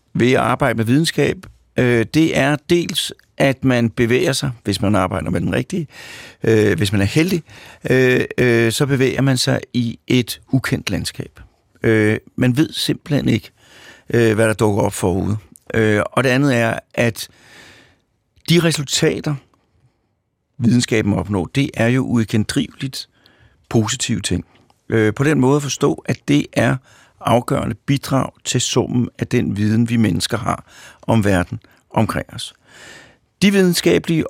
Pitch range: 110-135 Hz